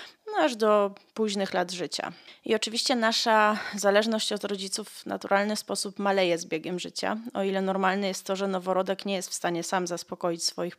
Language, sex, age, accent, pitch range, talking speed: Polish, female, 20-39, native, 185-220 Hz, 180 wpm